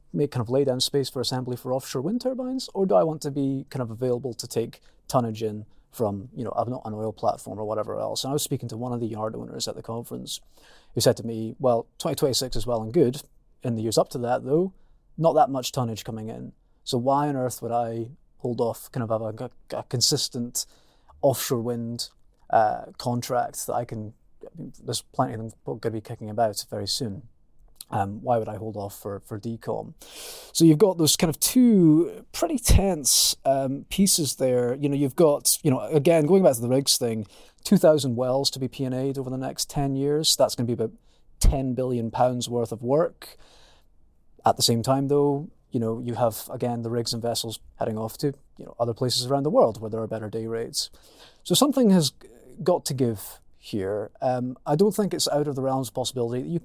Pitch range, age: 115-140 Hz, 30-49